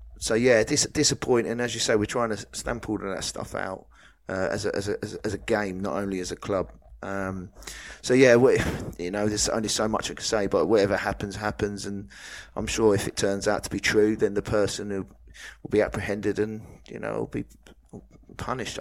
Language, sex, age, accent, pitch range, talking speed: English, male, 30-49, British, 100-110 Hz, 225 wpm